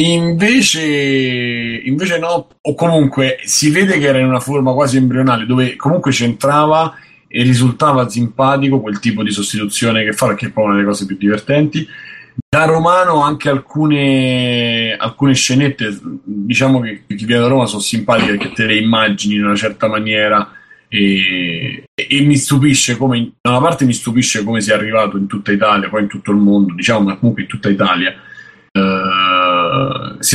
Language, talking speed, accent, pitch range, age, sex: Italian, 165 wpm, native, 110-140 Hz, 30-49, male